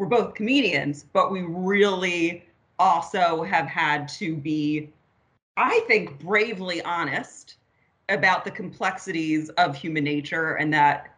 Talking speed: 125 wpm